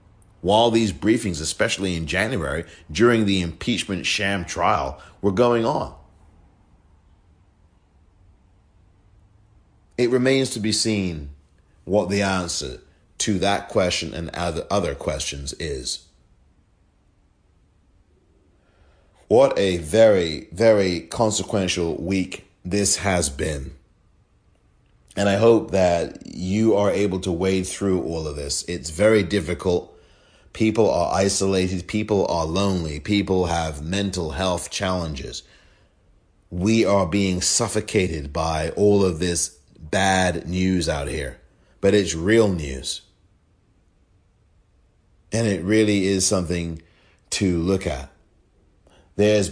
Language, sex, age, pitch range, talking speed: English, male, 30-49, 80-100 Hz, 110 wpm